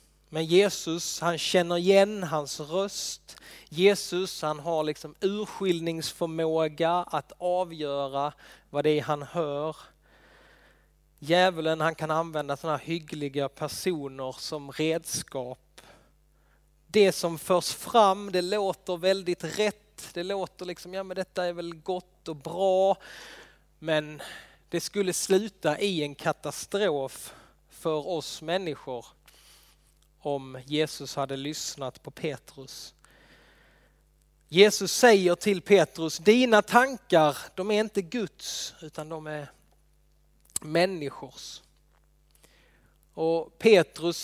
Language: Swedish